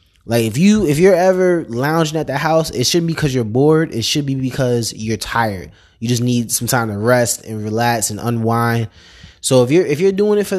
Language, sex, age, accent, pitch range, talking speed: English, male, 20-39, American, 110-140 Hz, 235 wpm